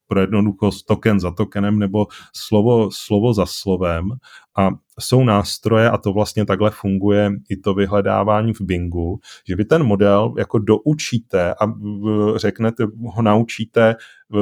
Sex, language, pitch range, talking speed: male, Czech, 95-110 Hz, 135 wpm